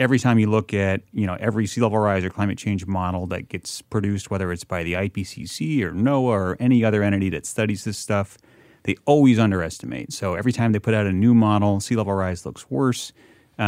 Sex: male